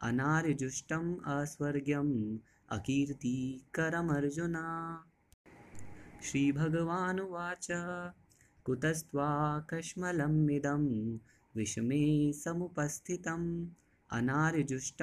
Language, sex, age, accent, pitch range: Hindi, male, 20-39, native, 135-165 Hz